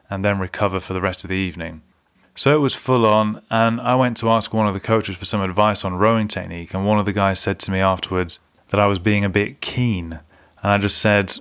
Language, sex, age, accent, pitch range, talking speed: English, male, 30-49, British, 95-110 Hz, 260 wpm